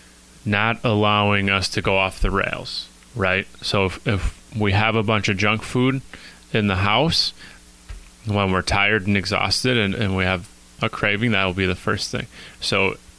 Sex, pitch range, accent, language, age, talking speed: male, 85-100 Hz, American, English, 20-39, 180 wpm